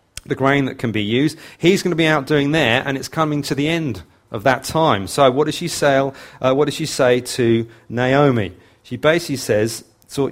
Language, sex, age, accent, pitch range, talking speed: English, male, 40-59, British, 120-160 Hz, 220 wpm